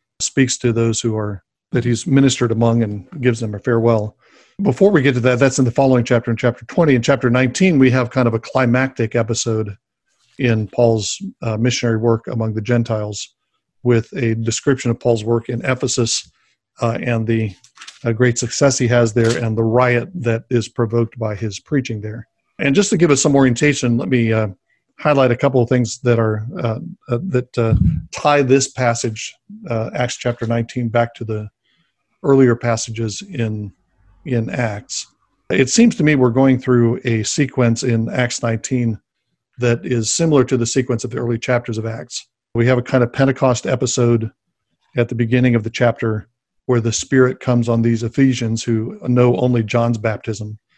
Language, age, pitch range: English, 50-69, 115-130 Hz